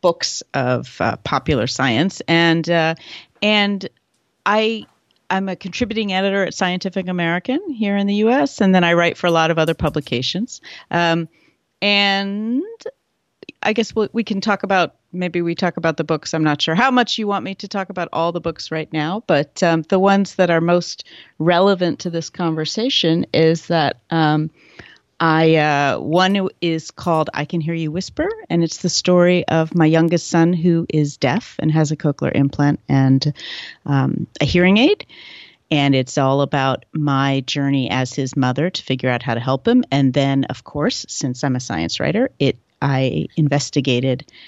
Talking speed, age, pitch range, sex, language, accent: 180 wpm, 40-59, 145-190 Hz, female, English, American